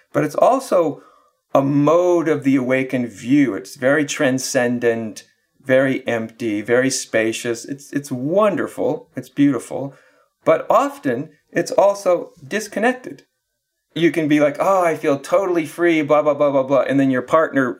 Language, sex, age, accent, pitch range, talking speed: English, male, 50-69, American, 120-160 Hz, 150 wpm